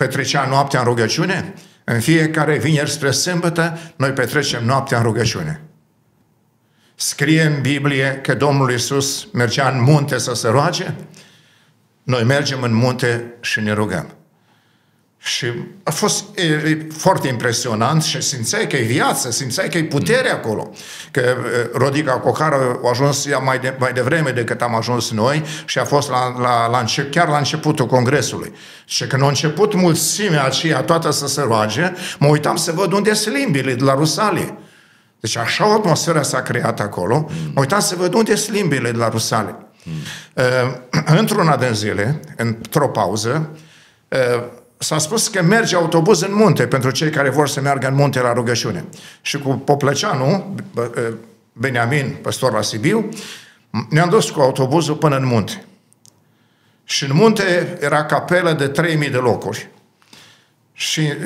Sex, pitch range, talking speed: male, 125-165 Hz, 155 wpm